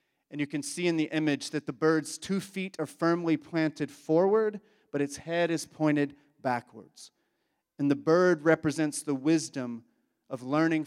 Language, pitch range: English, 135-155 Hz